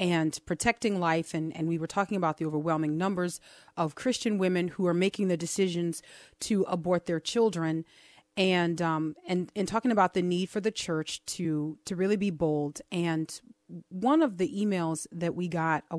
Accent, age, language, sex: American, 30-49, English, female